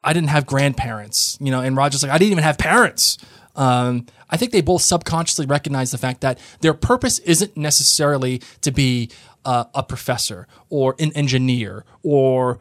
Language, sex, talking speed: English, male, 175 wpm